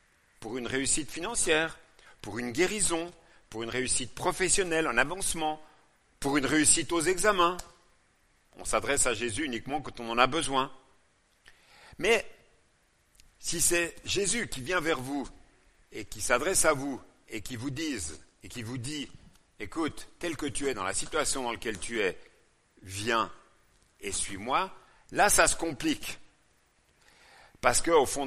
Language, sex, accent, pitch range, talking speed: French, male, French, 120-180 Hz, 150 wpm